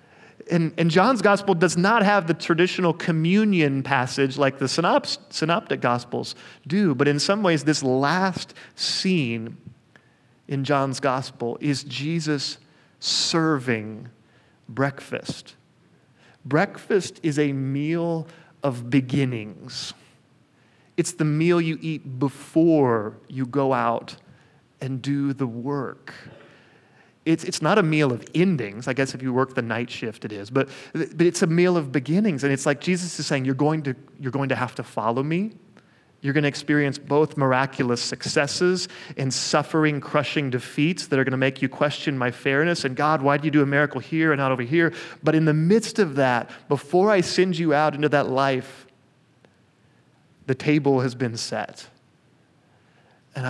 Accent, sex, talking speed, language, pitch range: American, male, 160 wpm, English, 130-165 Hz